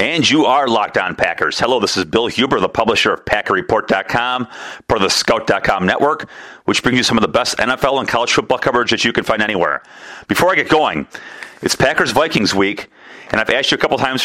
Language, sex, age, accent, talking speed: English, male, 40-59, American, 210 wpm